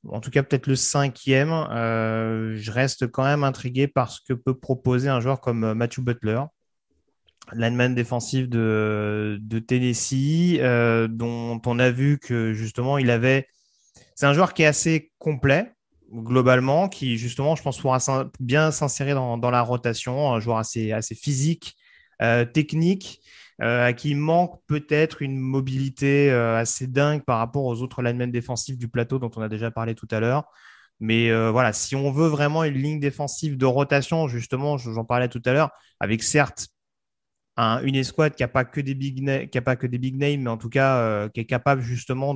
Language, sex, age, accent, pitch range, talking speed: French, male, 30-49, French, 115-140 Hz, 190 wpm